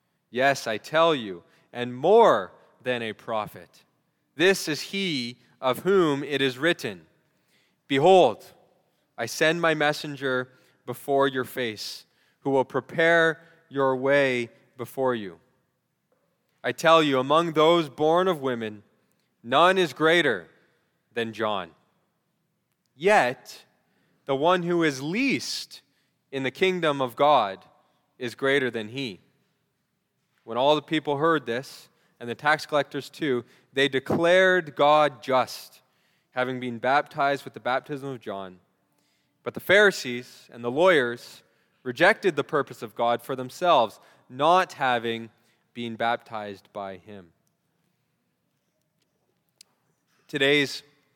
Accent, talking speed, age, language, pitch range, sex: American, 120 wpm, 20-39, English, 125-165 Hz, male